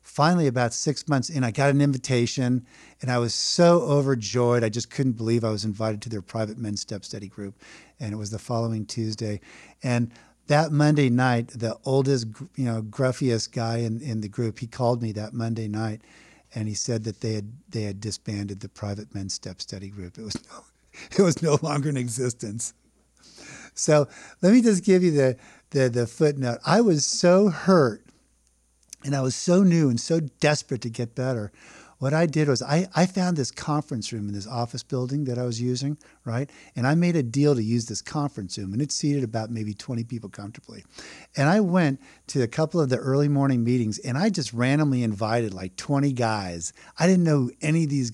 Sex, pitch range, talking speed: male, 110-145 Hz, 205 wpm